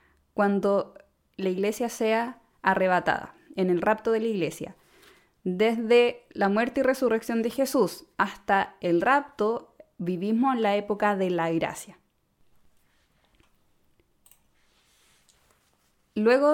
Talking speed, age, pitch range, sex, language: 105 wpm, 20-39, 190-235 Hz, female, Spanish